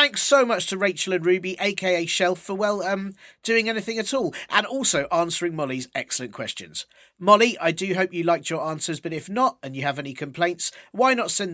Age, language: 40-59, English